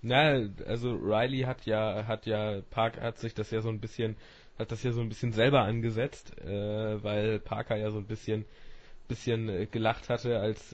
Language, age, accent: German, 20-39, German